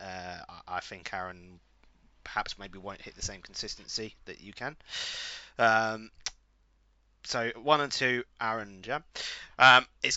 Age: 20-39